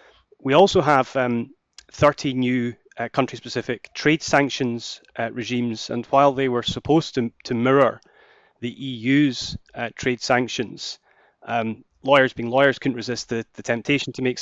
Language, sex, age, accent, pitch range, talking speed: English, male, 30-49, British, 120-140 Hz, 150 wpm